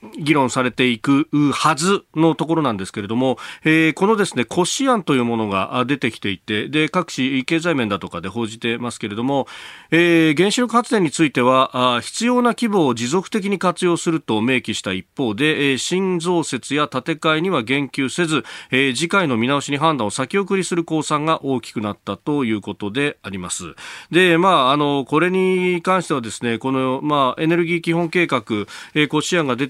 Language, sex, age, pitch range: Japanese, male, 40-59, 120-170 Hz